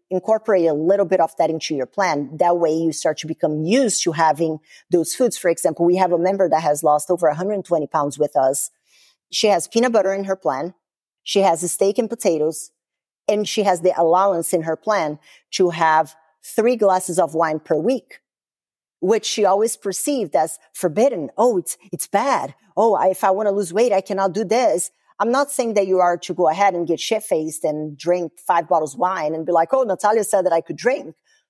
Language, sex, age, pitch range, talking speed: English, female, 40-59, 165-210 Hz, 215 wpm